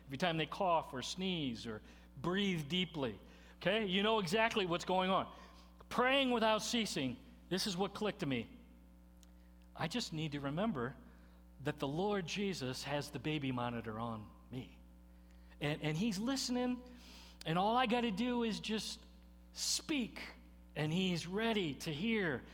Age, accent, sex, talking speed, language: 50-69, American, male, 155 wpm, English